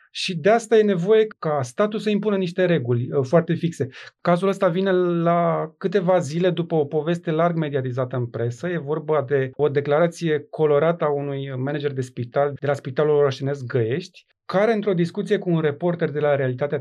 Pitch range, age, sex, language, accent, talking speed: 145-185 Hz, 30-49, male, Romanian, native, 180 wpm